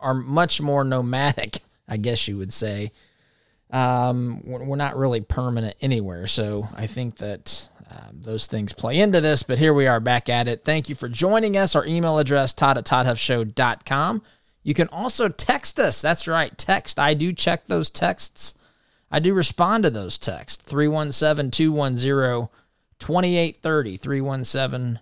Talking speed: 150 wpm